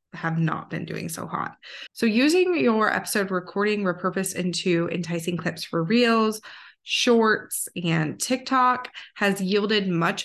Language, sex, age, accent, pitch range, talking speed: English, female, 20-39, American, 165-220 Hz, 135 wpm